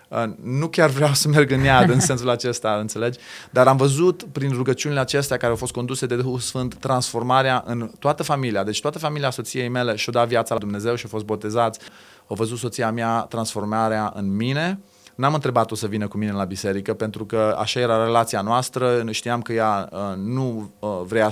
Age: 20-39